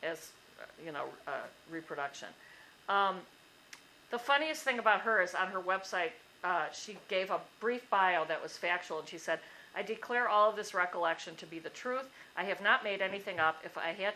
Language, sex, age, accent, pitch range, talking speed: English, female, 50-69, American, 175-230 Hz, 195 wpm